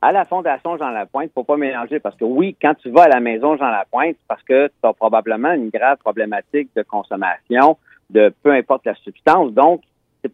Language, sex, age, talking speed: French, male, 50-69, 210 wpm